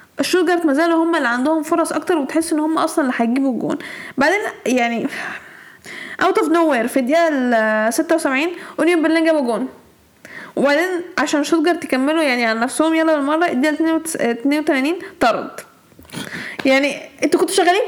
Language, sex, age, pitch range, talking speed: Arabic, female, 10-29, 260-320 Hz, 150 wpm